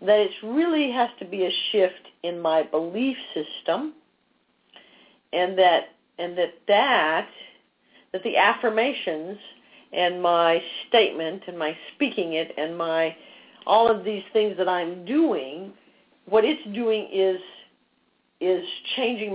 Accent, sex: American, female